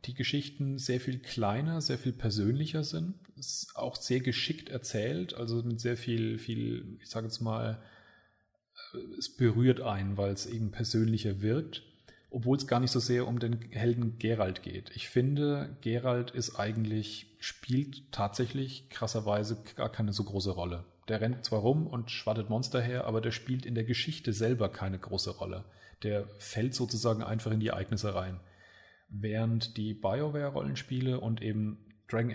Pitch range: 110-125 Hz